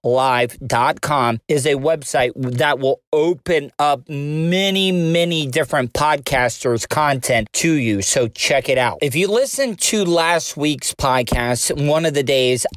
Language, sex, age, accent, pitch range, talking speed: English, male, 40-59, American, 125-150 Hz, 140 wpm